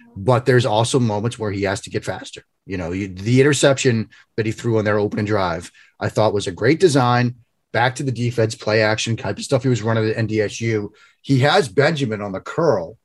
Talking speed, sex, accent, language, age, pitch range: 215 wpm, male, American, English, 30-49, 110-140 Hz